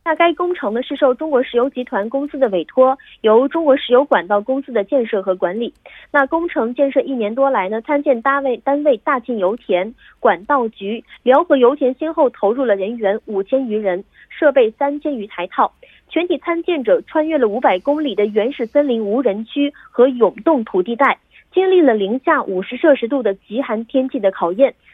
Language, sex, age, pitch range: Korean, female, 30-49, 225-295 Hz